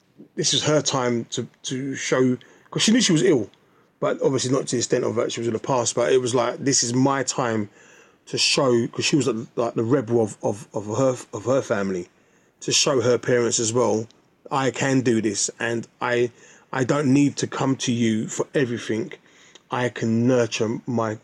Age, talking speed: 30-49, 210 wpm